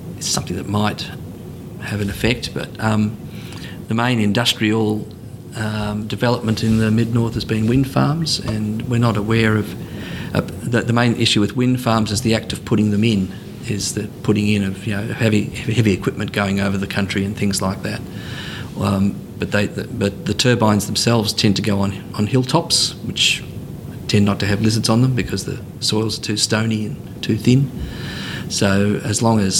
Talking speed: 195 wpm